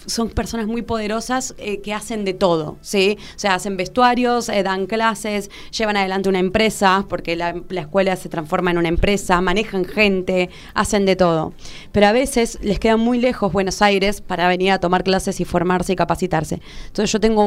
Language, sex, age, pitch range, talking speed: Spanish, female, 20-39, 190-220 Hz, 190 wpm